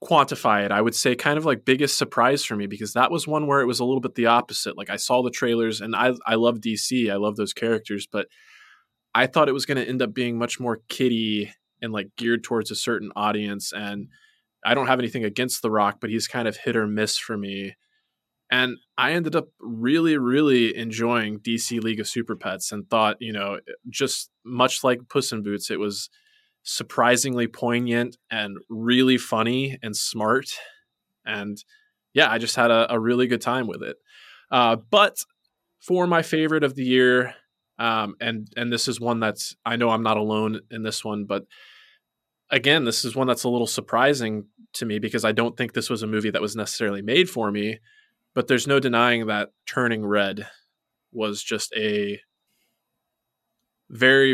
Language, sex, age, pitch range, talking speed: English, male, 20-39, 110-130 Hz, 195 wpm